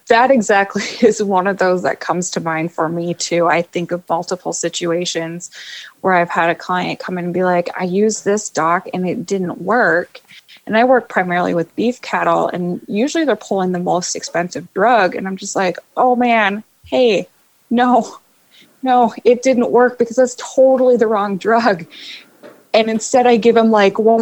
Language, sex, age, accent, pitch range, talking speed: English, female, 20-39, American, 180-235 Hz, 190 wpm